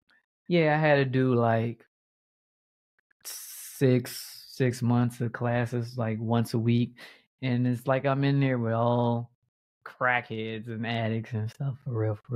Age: 20-39